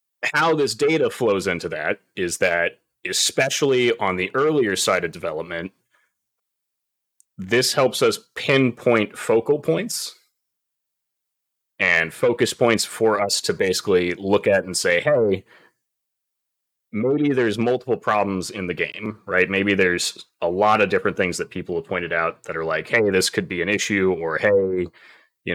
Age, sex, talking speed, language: 30-49, male, 155 wpm, English